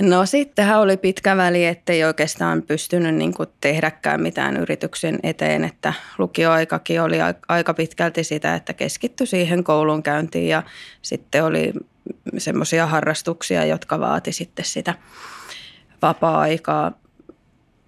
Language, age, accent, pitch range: Finnish, 20-39, native, 155-190 Hz